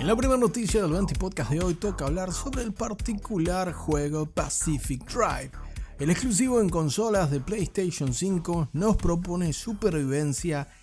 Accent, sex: Argentinian, male